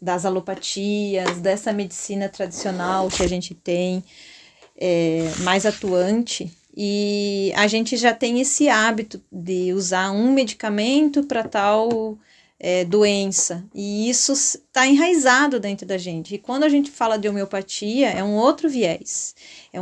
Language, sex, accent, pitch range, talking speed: Portuguese, female, Brazilian, 195-260 Hz, 135 wpm